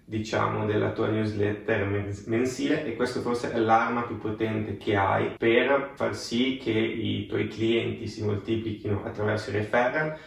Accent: native